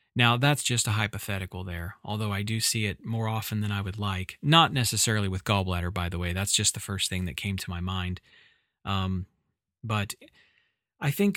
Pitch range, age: 100-120 Hz, 30-49